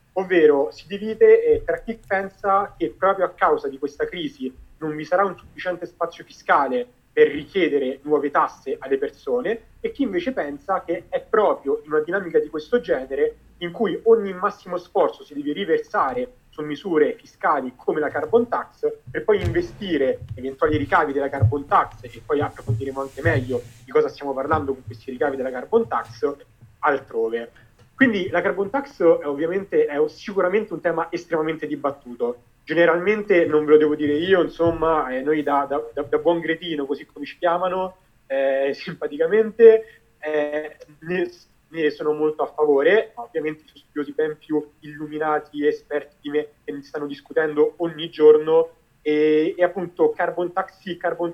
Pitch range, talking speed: 150-215 Hz, 165 wpm